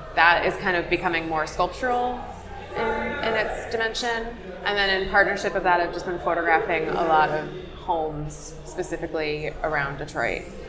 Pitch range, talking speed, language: 155-185 Hz, 155 wpm, English